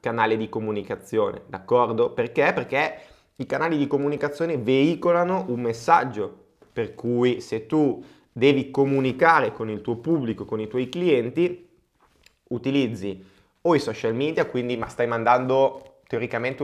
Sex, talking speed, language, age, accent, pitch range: male, 125 wpm, Italian, 20-39, native, 115-155 Hz